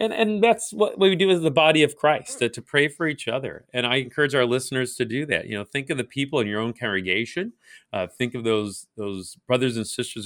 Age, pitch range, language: 40-59, 110-165 Hz, English